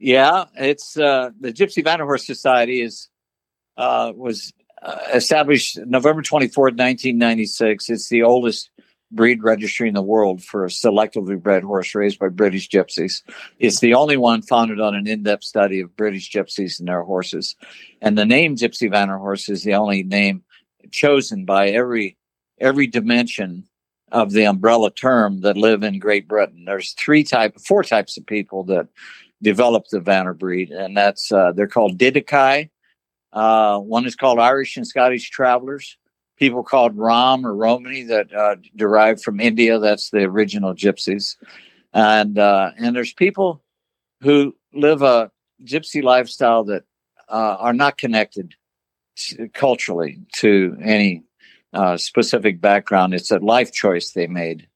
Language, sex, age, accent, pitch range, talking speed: English, male, 60-79, American, 100-125 Hz, 150 wpm